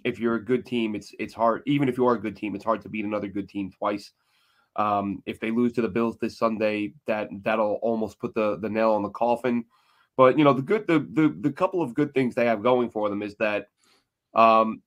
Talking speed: 250 wpm